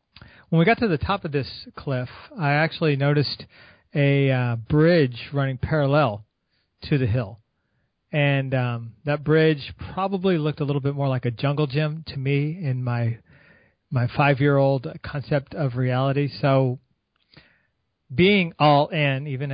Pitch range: 125-150 Hz